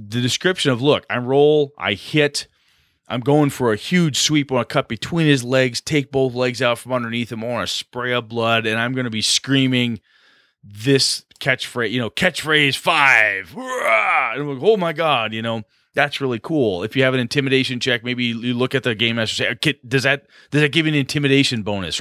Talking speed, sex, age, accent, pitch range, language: 215 wpm, male, 30-49, American, 110-145 Hz, English